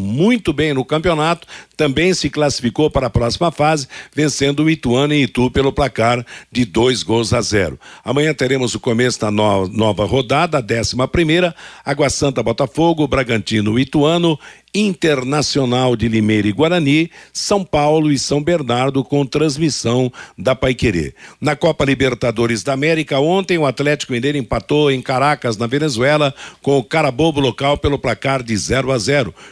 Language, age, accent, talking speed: Portuguese, 60-79, Brazilian, 155 wpm